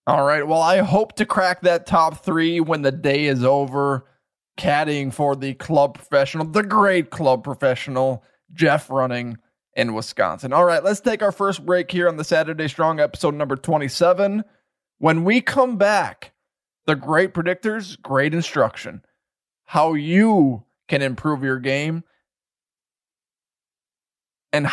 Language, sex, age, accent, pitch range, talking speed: English, male, 20-39, American, 140-175 Hz, 145 wpm